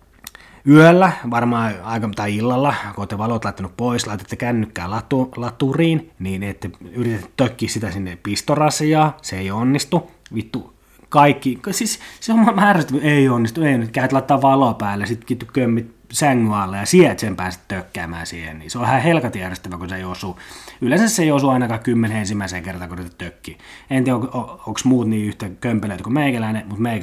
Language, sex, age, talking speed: Finnish, male, 20-39, 170 wpm